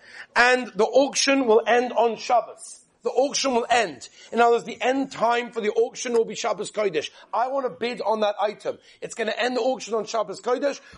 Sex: male